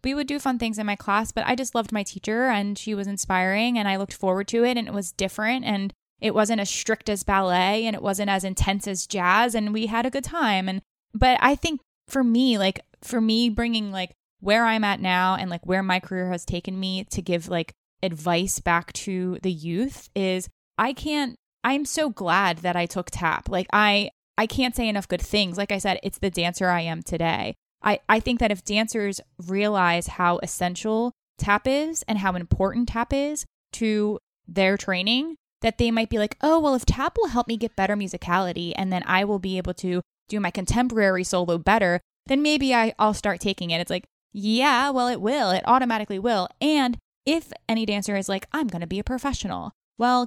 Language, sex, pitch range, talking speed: English, female, 185-235 Hz, 215 wpm